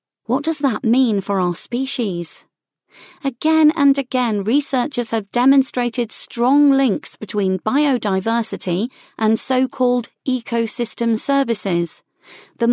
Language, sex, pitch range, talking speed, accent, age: English, female, 205-265 Hz, 105 wpm, British, 40-59